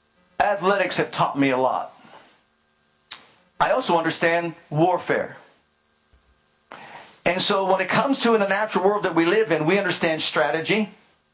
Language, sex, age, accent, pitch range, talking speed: English, male, 50-69, American, 155-210 Hz, 145 wpm